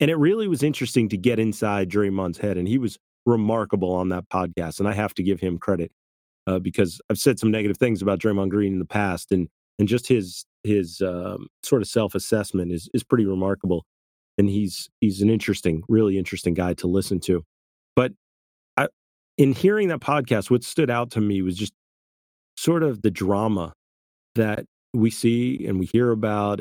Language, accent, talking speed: English, American, 190 wpm